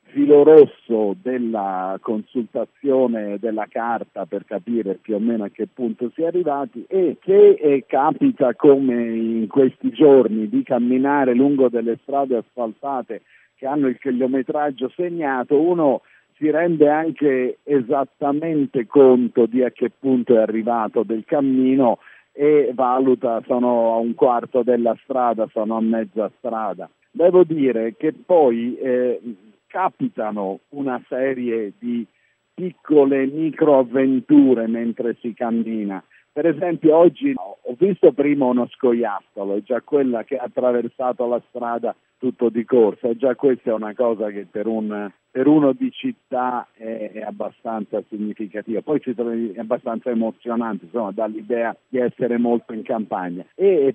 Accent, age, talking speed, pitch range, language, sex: native, 50-69, 140 wpm, 115-140 Hz, Italian, male